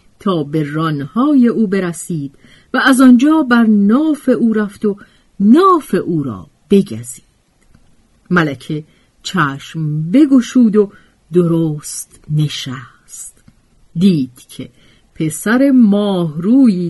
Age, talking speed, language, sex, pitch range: 50-69, 95 wpm, Persian, female, 150-230 Hz